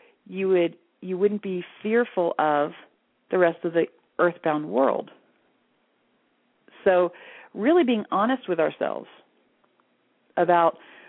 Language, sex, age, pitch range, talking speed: English, female, 40-59, 155-205 Hz, 110 wpm